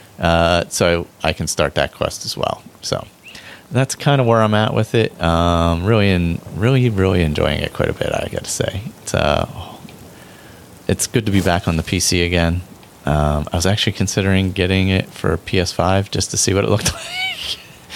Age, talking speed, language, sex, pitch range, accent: 30-49, 200 wpm, English, male, 75-95 Hz, American